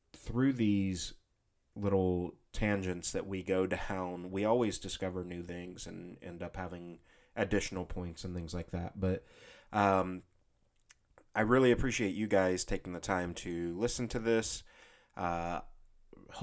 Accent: American